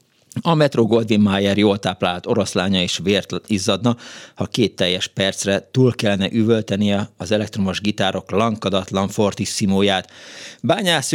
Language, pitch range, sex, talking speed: Hungarian, 100-125 Hz, male, 130 wpm